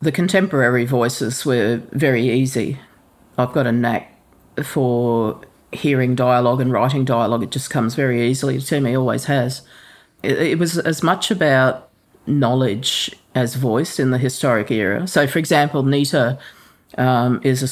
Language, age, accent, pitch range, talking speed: English, 40-59, Australian, 120-135 Hz, 150 wpm